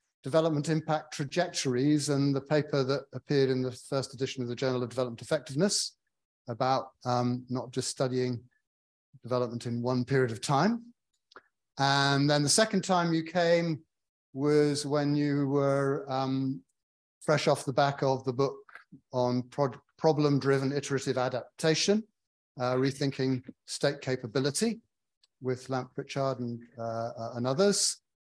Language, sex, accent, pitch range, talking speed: English, male, British, 125-150 Hz, 125 wpm